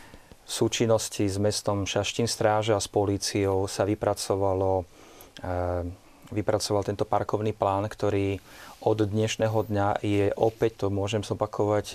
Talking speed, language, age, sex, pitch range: 115 wpm, Slovak, 30-49, male, 95-110 Hz